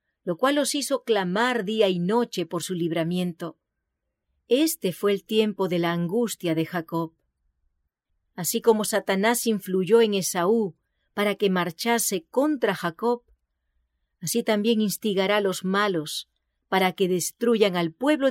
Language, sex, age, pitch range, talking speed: English, female, 40-59, 165-225 Hz, 140 wpm